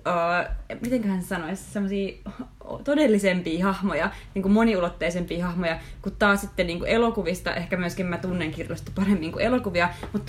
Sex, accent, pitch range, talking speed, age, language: female, native, 175-220 Hz, 145 wpm, 20-39, Finnish